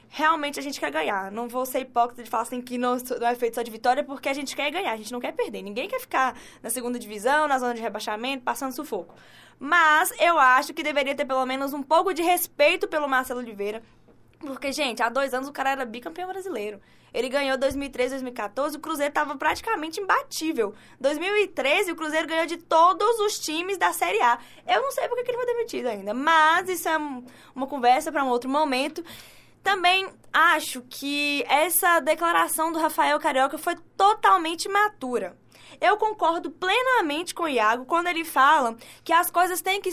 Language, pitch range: Portuguese, 255-340 Hz